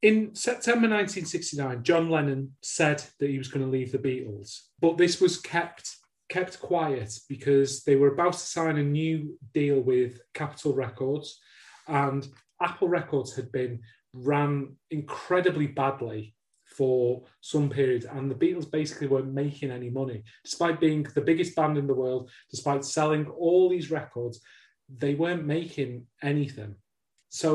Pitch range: 135-160 Hz